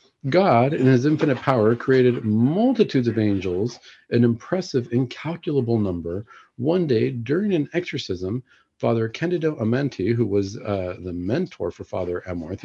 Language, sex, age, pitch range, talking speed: English, male, 50-69, 100-130 Hz, 140 wpm